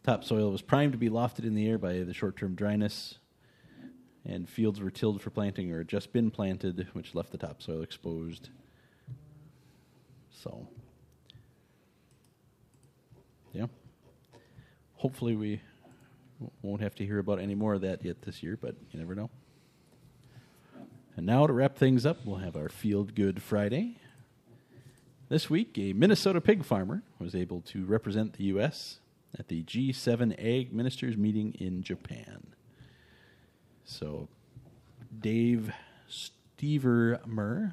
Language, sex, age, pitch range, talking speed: English, male, 40-59, 100-130 Hz, 135 wpm